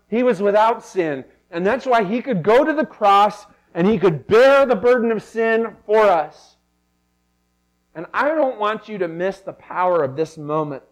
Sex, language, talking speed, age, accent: male, English, 190 wpm, 40-59, American